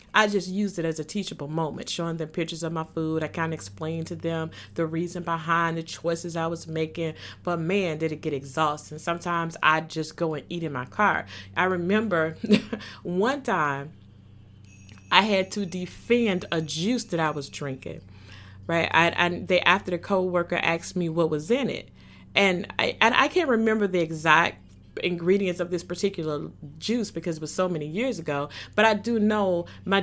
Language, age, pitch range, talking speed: English, 30-49, 160-205 Hz, 190 wpm